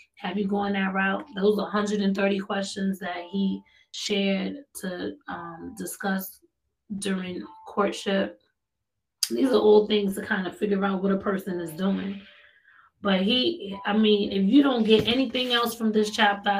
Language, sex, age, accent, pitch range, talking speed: English, female, 20-39, American, 195-215 Hz, 155 wpm